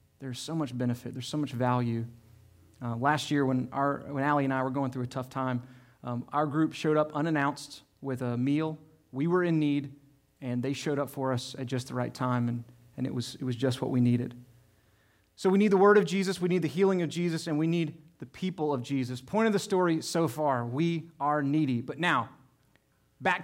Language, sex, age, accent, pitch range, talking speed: English, male, 30-49, American, 130-180 Hz, 230 wpm